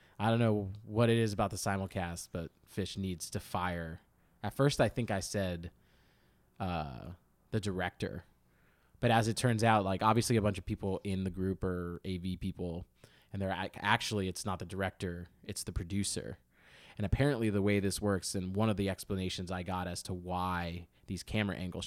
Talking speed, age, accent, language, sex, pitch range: 190 wpm, 20-39, American, English, male, 90-105 Hz